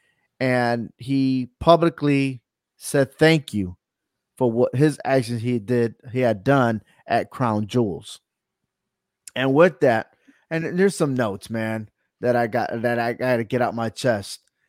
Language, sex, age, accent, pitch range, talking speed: English, male, 30-49, American, 120-155 Hz, 145 wpm